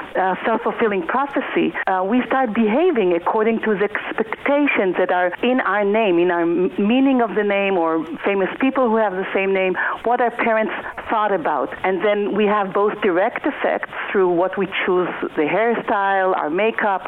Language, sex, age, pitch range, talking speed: English, female, 50-69, 185-230 Hz, 175 wpm